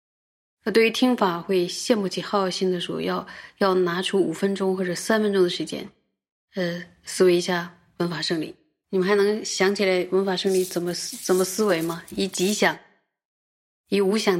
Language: Chinese